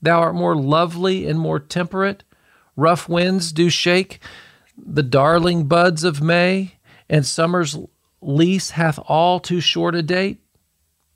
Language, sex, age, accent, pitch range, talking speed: English, male, 50-69, American, 130-175 Hz, 135 wpm